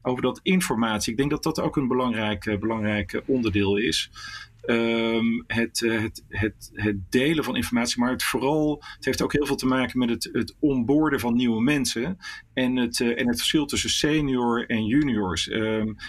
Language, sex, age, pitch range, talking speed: Dutch, male, 40-59, 110-130 Hz, 185 wpm